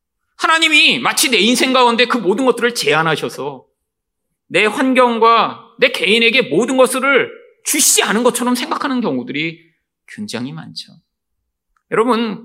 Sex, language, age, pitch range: male, Korean, 30-49, 175-270 Hz